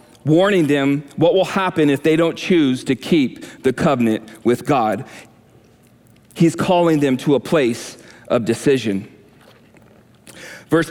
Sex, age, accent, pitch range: male, 40-59, American, 130-165 Hz